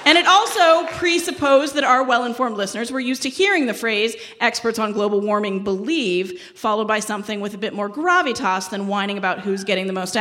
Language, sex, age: English, female, 30-49